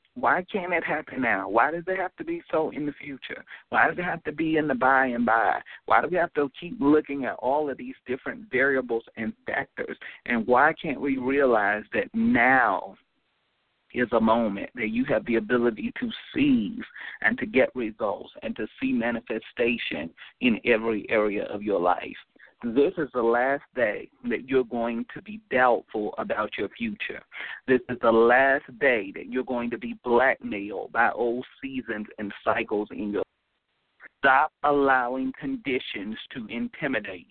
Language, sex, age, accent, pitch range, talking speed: English, male, 40-59, American, 120-180 Hz, 175 wpm